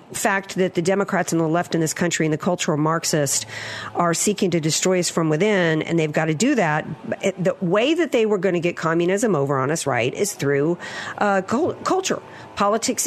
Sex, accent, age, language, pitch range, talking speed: female, American, 50-69, English, 165-200 Hz, 205 wpm